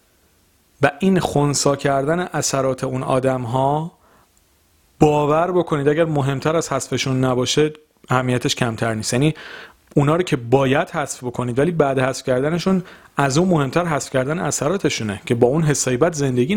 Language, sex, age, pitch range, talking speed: Persian, male, 40-59, 110-160 Hz, 145 wpm